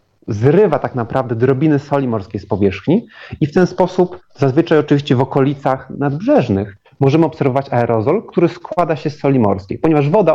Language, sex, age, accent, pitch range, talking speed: Polish, male, 30-49, native, 120-155 Hz, 160 wpm